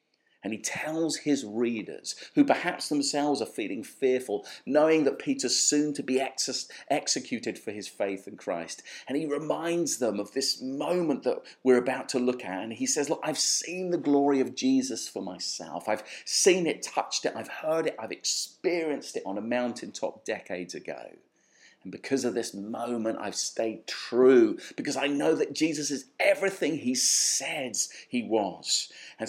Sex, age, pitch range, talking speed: male, 40-59, 110-155 Hz, 170 wpm